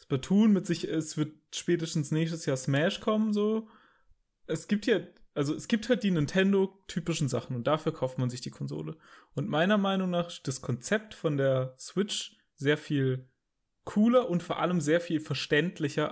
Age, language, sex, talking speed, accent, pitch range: 20-39, German, male, 175 wpm, German, 130-165 Hz